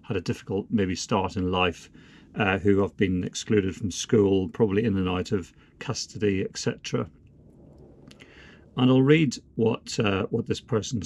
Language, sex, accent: English, male, British